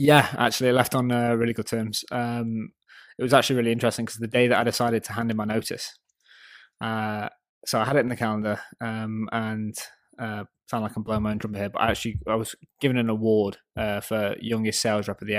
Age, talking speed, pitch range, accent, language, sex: 20-39, 235 wpm, 105-115 Hz, British, English, male